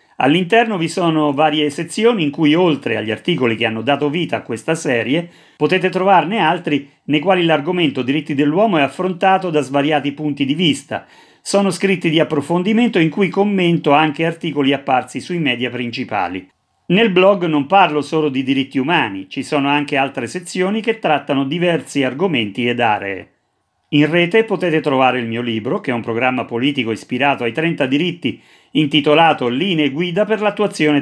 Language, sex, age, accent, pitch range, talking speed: Italian, male, 40-59, native, 135-180 Hz, 165 wpm